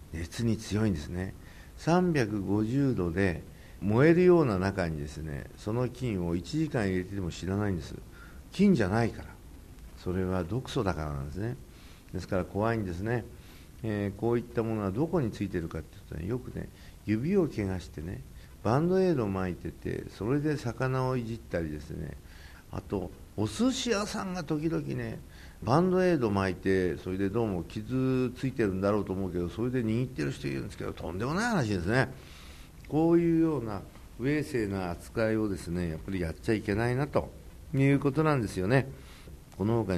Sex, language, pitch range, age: male, Japanese, 85-130 Hz, 60-79